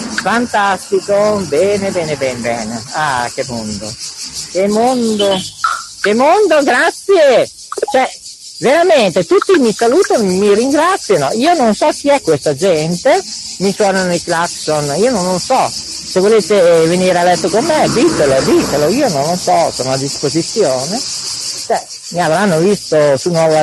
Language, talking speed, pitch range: Italian, 145 wpm, 155-235 Hz